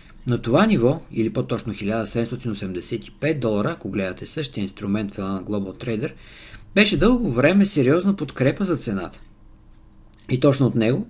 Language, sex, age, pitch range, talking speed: Bulgarian, male, 50-69, 105-145 Hz, 140 wpm